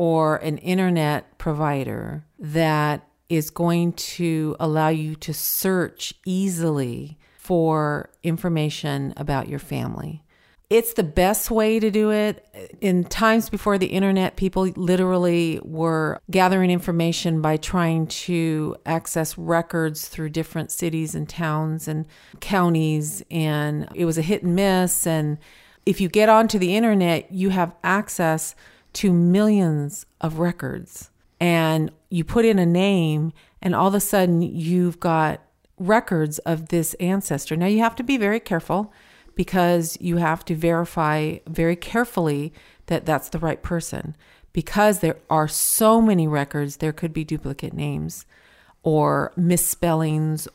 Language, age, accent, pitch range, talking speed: English, 50-69, American, 155-185 Hz, 140 wpm